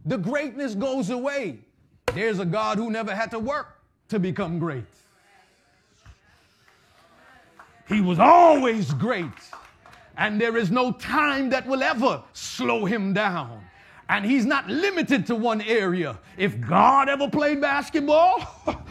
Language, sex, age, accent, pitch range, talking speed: English, male, 30-49, American, 165-275 Hz, 135 wpm